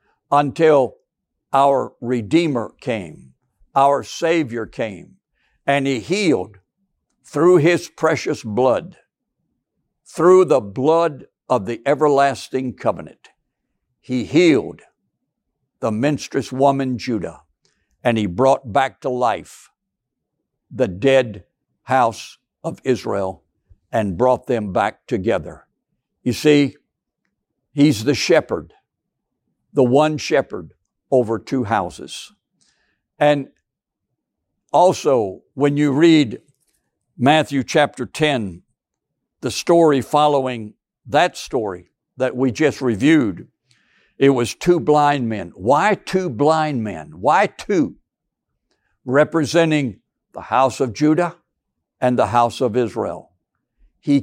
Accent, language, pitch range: American, English, 120-150 Hz